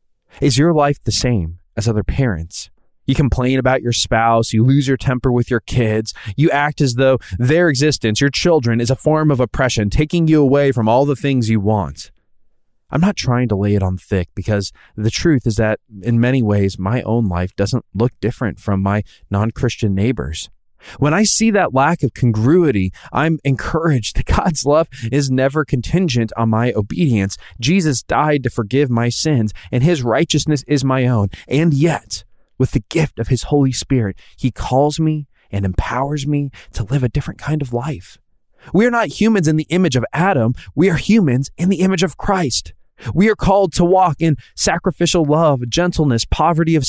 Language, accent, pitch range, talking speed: English, American, 110-155 Hz, 190 wpm